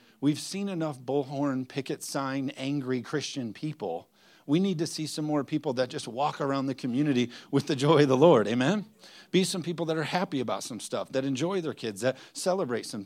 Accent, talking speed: American, 205 wpm